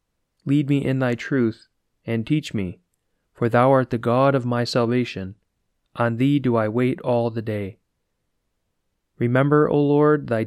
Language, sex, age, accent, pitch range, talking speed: English, male, 30-49, American, 110-135 Hz, 160 wpm